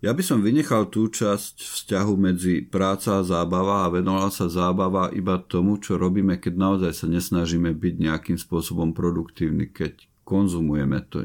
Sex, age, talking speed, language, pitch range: male, 50-69, 160 wpm, Slovak, 85-95 Hz